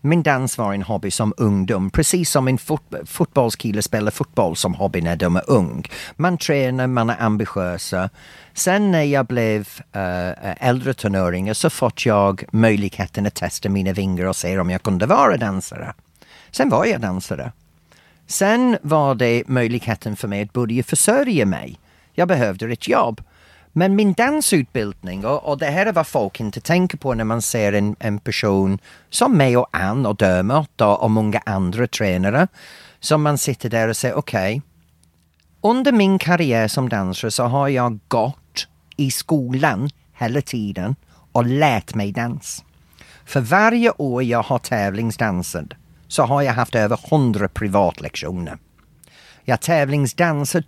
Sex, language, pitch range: male, Swedish, 100-140 Hz